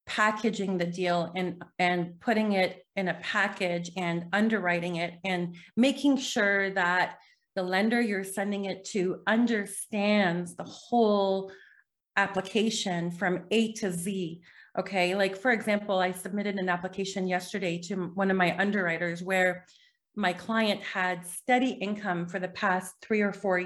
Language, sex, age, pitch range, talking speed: English, female, 30-49, 185-210 Hz, 145 wpm